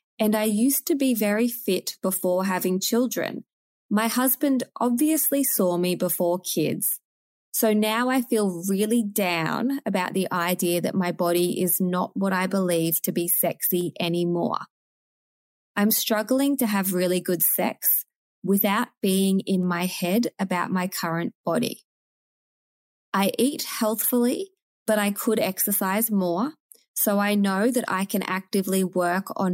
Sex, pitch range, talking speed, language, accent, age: female, 185-230 Hz, 145 wpm, English, Australian, 20-39